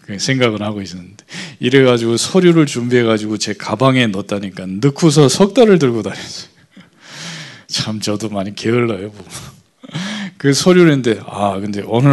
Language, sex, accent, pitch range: Korean, male, native, 100-130 Hz